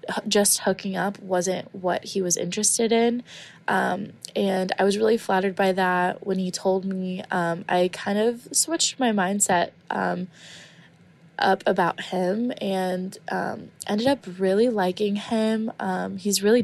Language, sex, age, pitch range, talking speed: English, female, 20-39, 175-200 Hz, 150 wpm